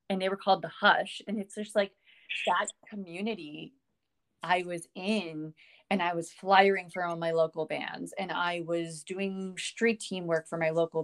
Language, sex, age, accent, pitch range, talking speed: English, female, 30-49, American, 170-215 Hz, 180 wpm